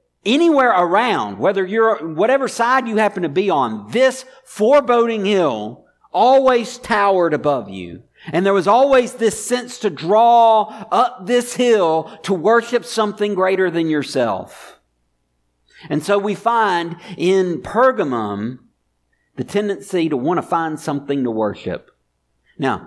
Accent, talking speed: American, 135 wpm